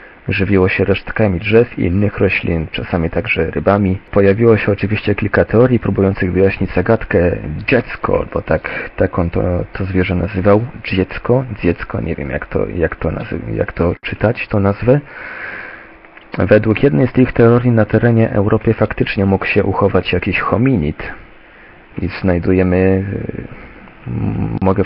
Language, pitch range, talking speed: Polish, 95-110 Hz, 130 wpm